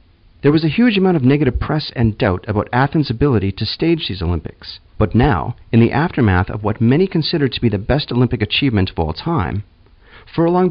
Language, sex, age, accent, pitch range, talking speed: English, male, 40-59, American, 100-150 Hz, 200 wpm